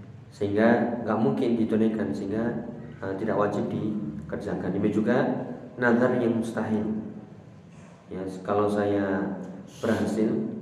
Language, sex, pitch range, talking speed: Indonesian, male, 100-115 Hz, 100 wpm